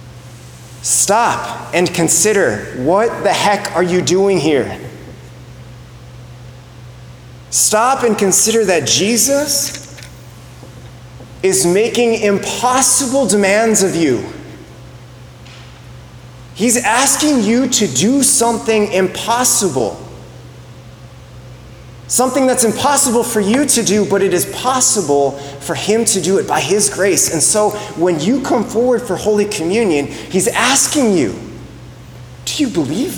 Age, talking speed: 30-49, 110 wpm